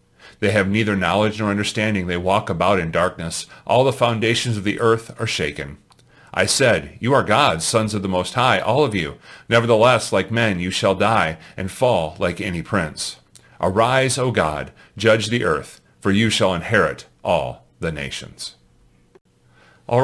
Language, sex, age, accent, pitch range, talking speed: English, male, 40-59, American, 110-145 Hz, 170 wpm